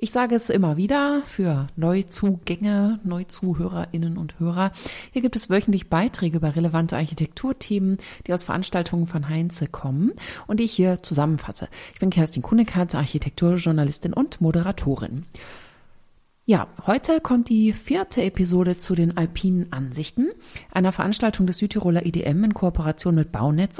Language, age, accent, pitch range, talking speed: German, 30-49, German, 165-215 Hz, 140 wpm